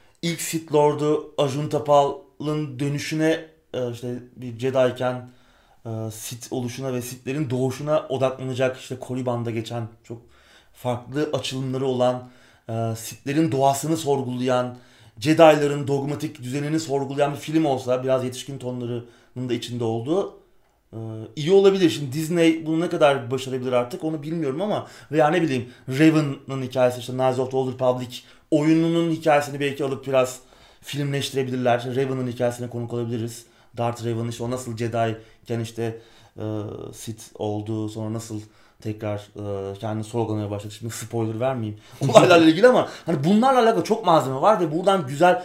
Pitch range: 120-155 Hz